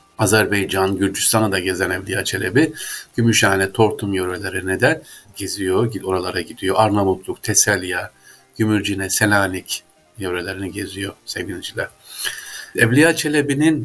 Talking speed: 95 wpm